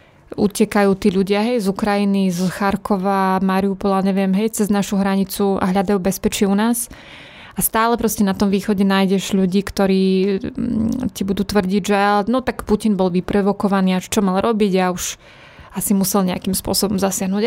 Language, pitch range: Slovak, 195-215 Hz